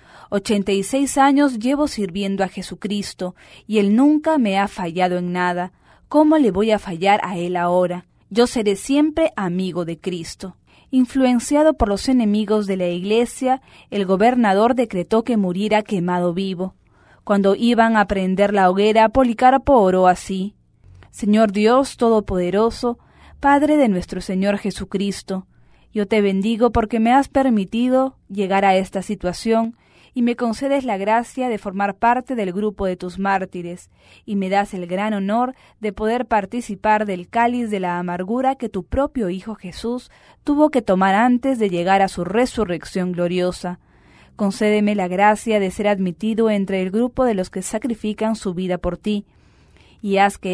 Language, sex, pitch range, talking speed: English, female, 190-235 Hz, 160 wpm